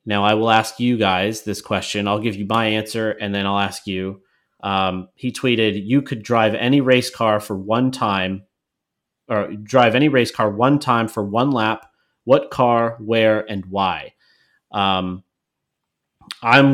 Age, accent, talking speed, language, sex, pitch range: 30-49, American, 170 wpm, English, male, 100-120 Hz